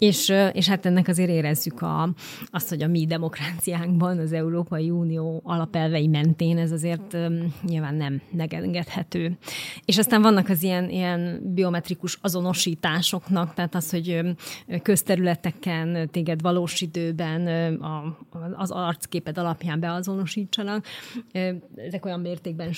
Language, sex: Hungarian, female